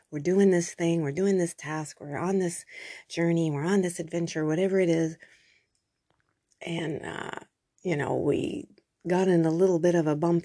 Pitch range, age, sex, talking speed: 150-185 Hz, 30-49, female, 185 wpm